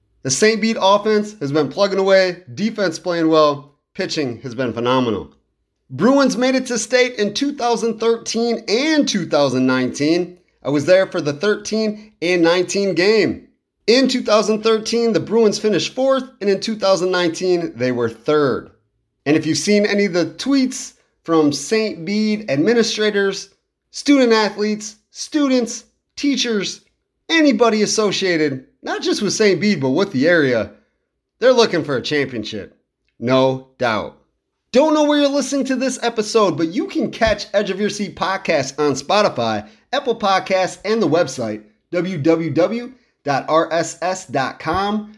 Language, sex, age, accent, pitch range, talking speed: English, male, 30-49, American, 160-225 Hz, 140 wpm